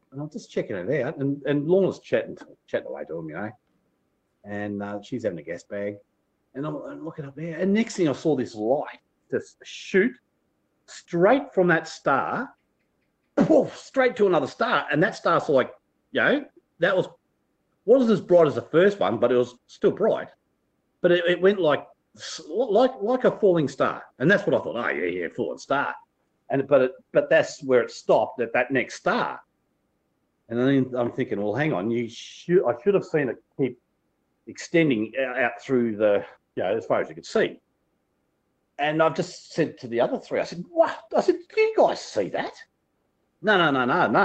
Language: English